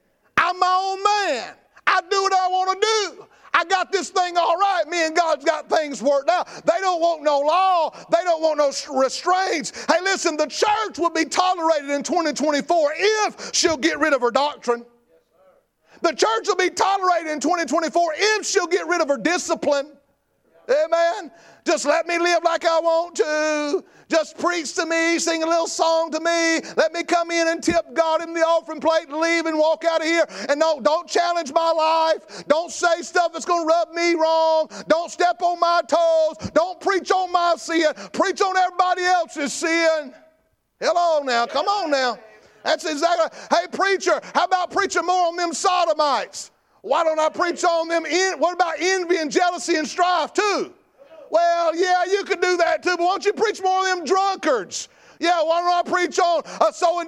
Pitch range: 320-365 Hz